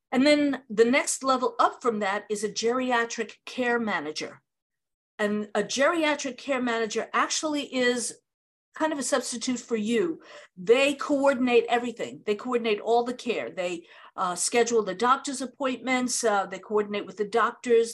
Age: 50-69